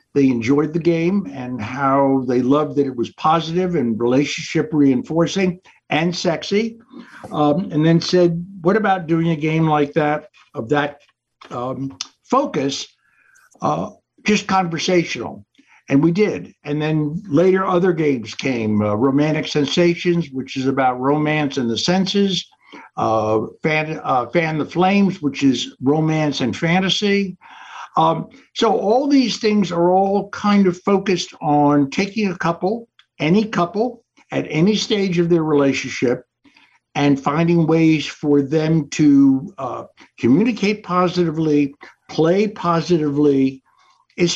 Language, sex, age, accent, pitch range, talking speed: English, male, 60-79, American, 145-185 Hz, 135 wpm